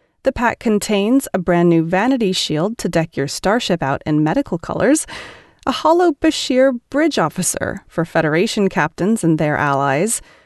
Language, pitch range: English, 170-270 Hz